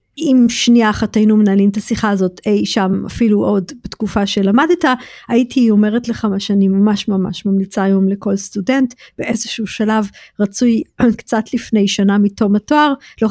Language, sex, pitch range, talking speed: Hebrew, female, 195-225 Hz, 150 wpm